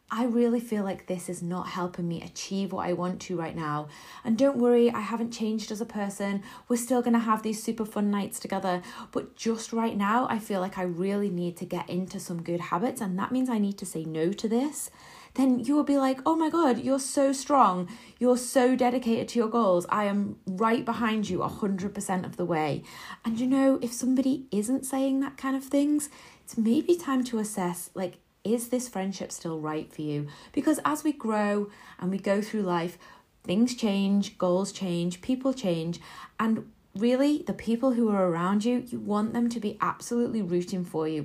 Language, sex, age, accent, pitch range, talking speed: English, female, 30-49, British, 180-245 Hz, 210 wpm